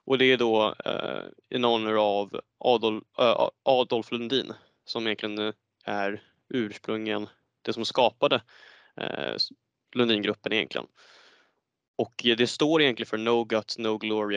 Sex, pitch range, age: male, 110-125 Hz, 20-39